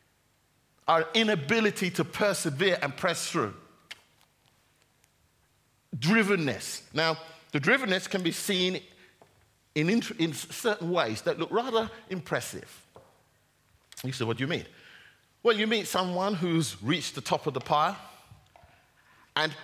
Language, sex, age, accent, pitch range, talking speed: English, male, 50-69, British, 140-185 Hz, 120 wpm